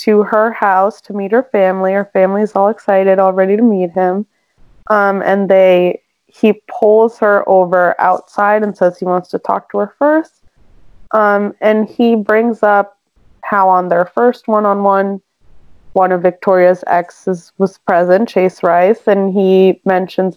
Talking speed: 160 wpm